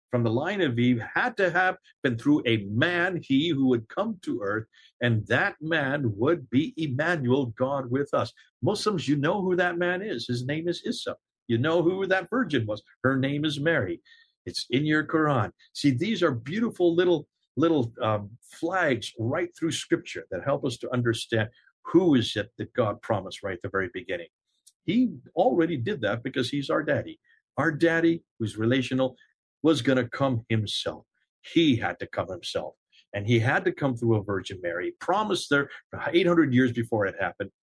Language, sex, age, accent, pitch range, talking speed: English, male, 50-69, American, 115-170 Hz, 185 wpm